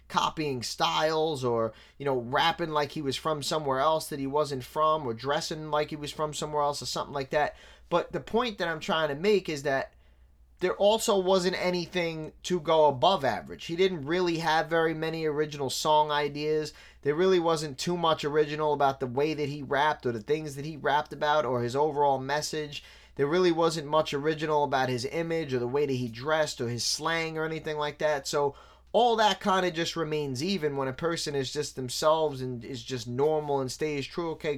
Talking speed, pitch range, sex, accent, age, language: 210 wpm, 140-160 Hz, male, American, 20-39, English